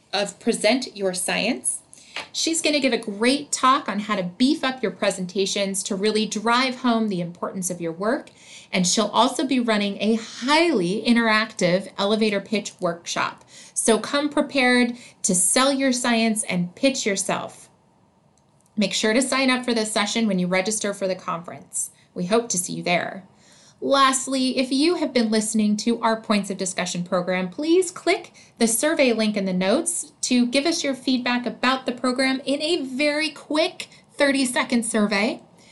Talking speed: 170 wpm